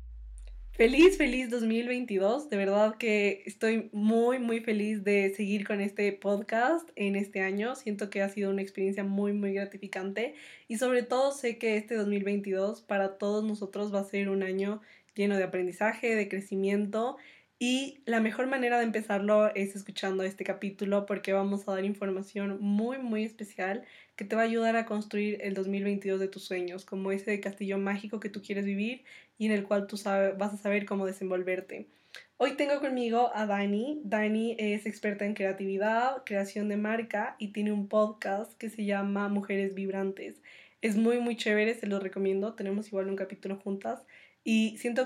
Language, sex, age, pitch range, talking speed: Spanish, female, 20-39, 200-225 Hz, 175 wpm